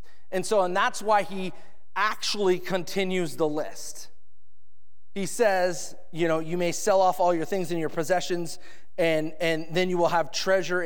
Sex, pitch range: male, 140-190 Hz